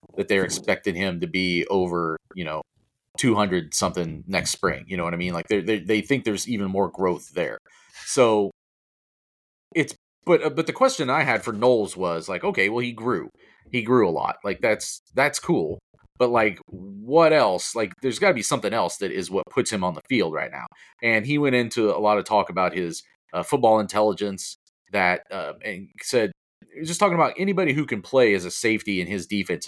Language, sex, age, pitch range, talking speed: English, male, 40-59, 100-140 Hz, 215 wpm